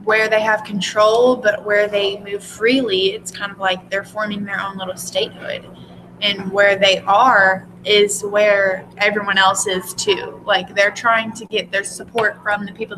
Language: English